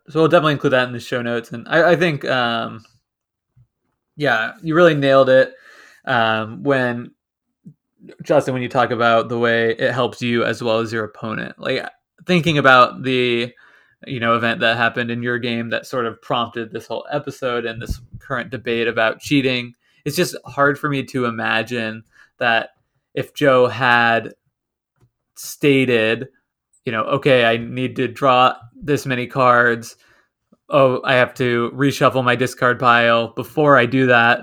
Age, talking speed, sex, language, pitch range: 20-39, 165 wpm, male, English, 115-135 Hz